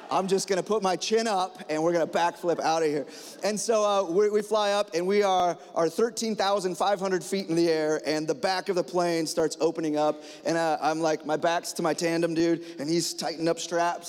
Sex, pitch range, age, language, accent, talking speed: male, 160-190 Hz, 30-49, English, American, 240 wpm